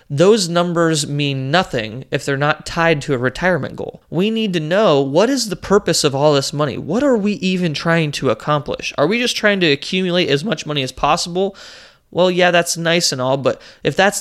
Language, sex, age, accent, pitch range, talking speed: English, male, 30-49, American, 135-175 Hz, 215 wpm